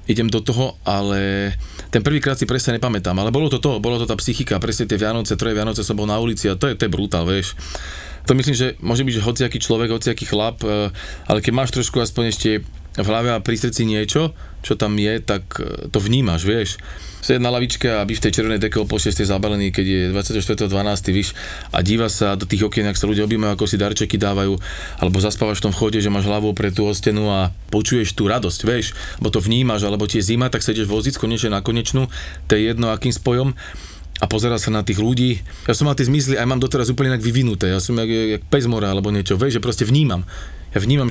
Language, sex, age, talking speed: Slovak, male, 20-39, 220 wpm